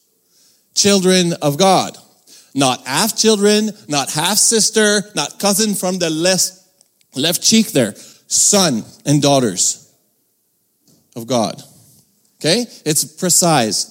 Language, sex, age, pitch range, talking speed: English, male, 30-49, 150-205 Hz, 100 wpm